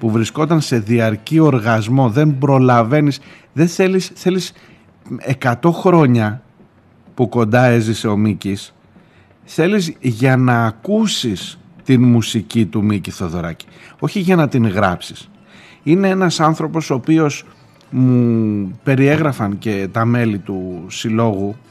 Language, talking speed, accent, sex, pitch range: Greek, 120 wpm, native, male, 105-140 Hz